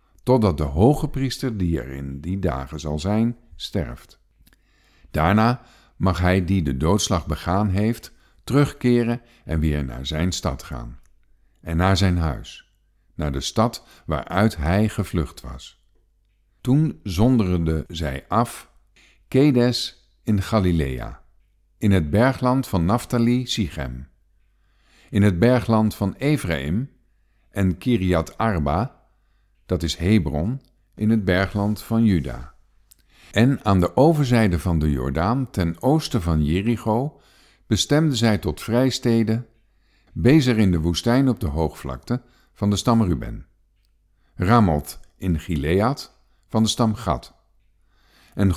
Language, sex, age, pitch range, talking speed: Dutch, male, 50-69, 85-115 Hz, 125 wpm